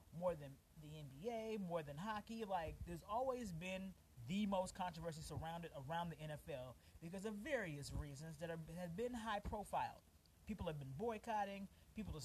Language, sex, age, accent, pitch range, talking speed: English, male, 30-49, American, 140-195 Hz, 160 wpm